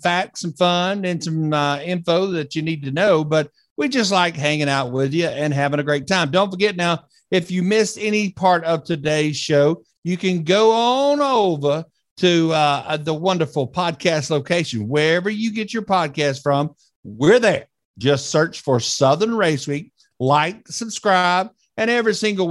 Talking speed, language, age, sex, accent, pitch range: 175 wpm, English, 50-69, male, American, 150-195 Hz